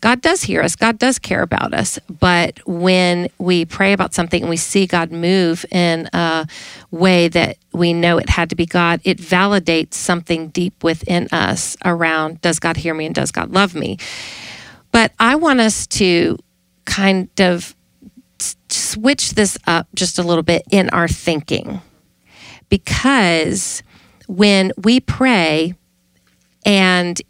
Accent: American